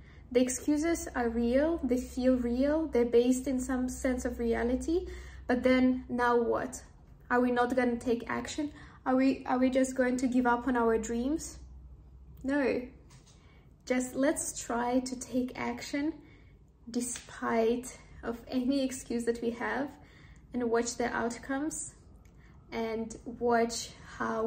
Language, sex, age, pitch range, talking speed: English, female, 10-29, 235-260 Hz, 140 wpm